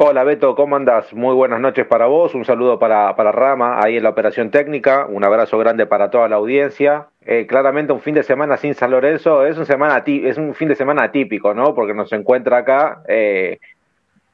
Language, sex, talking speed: Spanish, male, 210 wpm